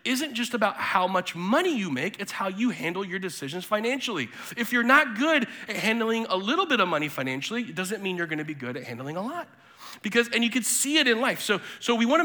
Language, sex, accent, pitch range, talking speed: English, male, American, 180-255 Hz, 245 wpm